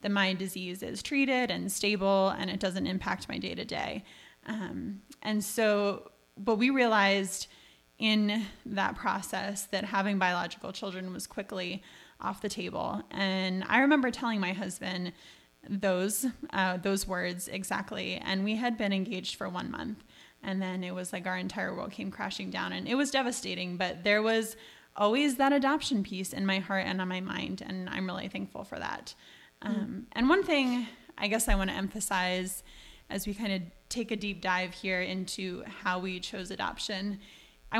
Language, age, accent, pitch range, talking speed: English, 20-39, American, 190-225 Hz, 175 wpm